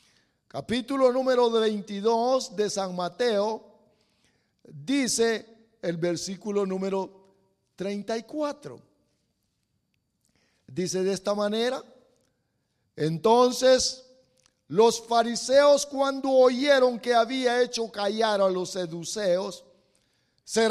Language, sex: English, male